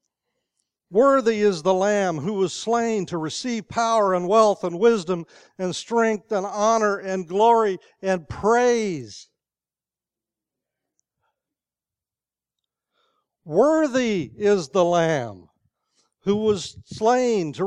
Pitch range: 145-210 Hz